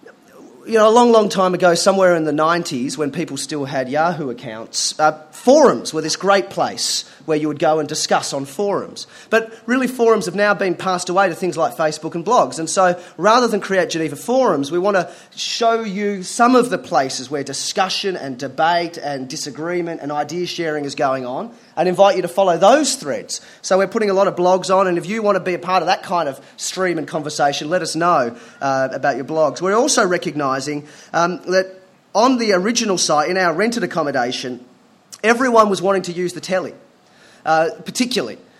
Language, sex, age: English, male, 30-49